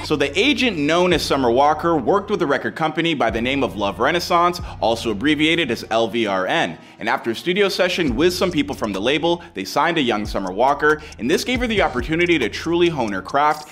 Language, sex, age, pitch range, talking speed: English, male, 30-49, 110-160 Hz, 220 wpm